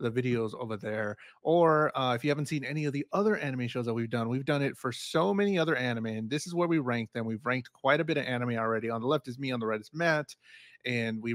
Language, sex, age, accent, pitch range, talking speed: English, male, 30-49, American, 115-150 Hz, 285 wpm